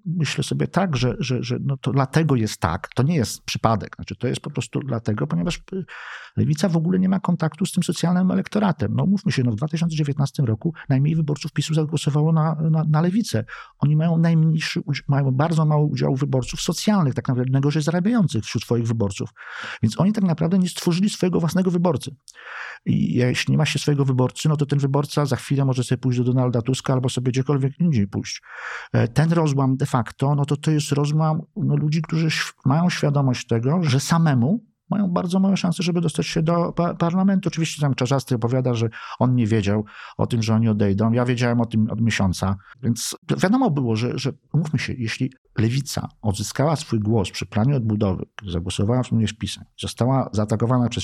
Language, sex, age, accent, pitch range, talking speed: Polish, male, 50-69, native, 120-165 Hz, 195 wpm